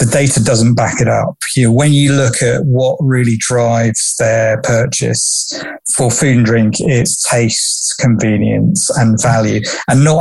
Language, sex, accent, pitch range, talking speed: English, male, British, 115-135 Hz, 165 wpm